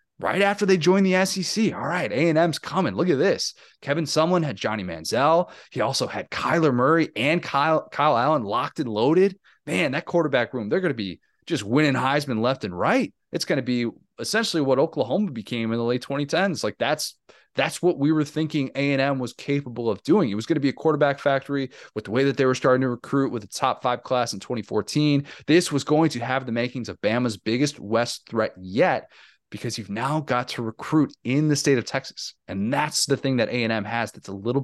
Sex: male